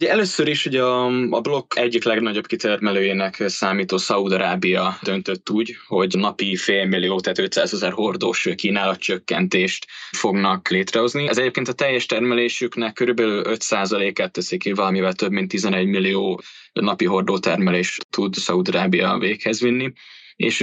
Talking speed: 140 wpm